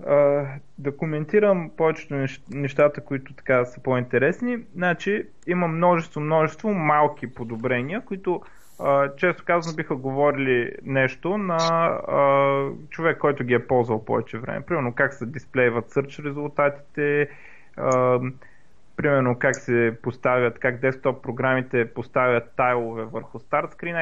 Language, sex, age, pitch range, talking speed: Bulgarian, male, 30-49, 130-170 Hz, 120 wpm